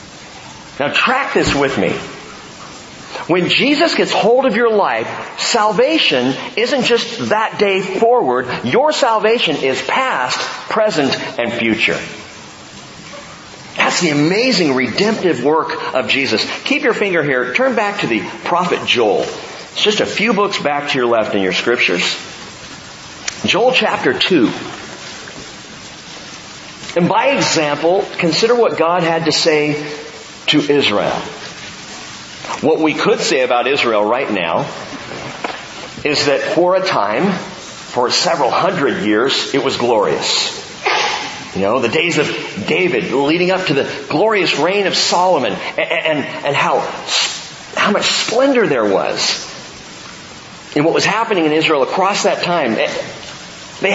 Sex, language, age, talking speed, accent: male, English, 40-59, 135 wpm, American